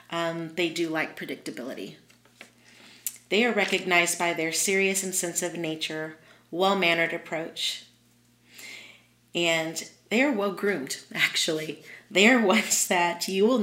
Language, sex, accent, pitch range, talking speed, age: English, female, American, 165-205 Hz, 125 wpm, 30-49